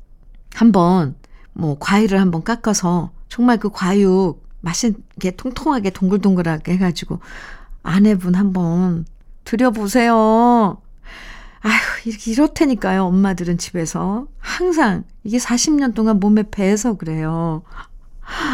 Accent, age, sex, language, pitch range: native, 50-69, female, Korean, 175-240 Hz